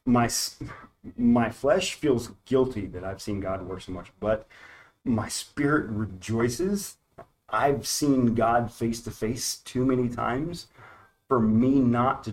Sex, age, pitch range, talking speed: male, 30-49, 110-140 Hz, 140 wpm